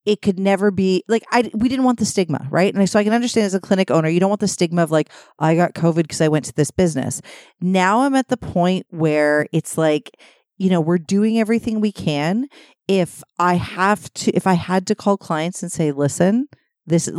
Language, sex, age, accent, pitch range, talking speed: English, female, 40-59, American, 155-195 Hz, 230 wpm